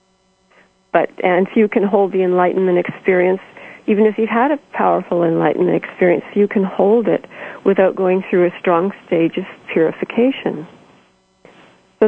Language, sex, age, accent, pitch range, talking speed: English, female, 40-59, American, 180-225 Hz, 145 wpm